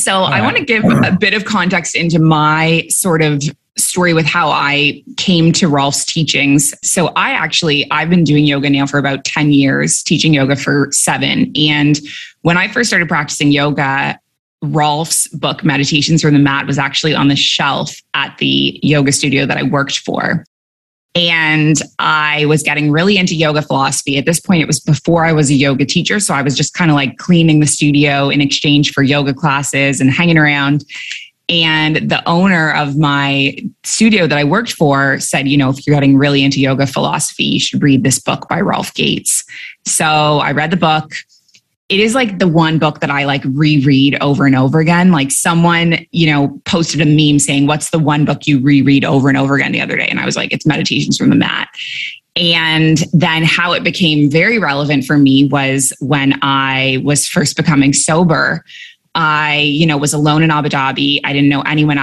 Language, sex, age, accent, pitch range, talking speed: English, female, 20-39, American, 140-165 Hz, 200 wpm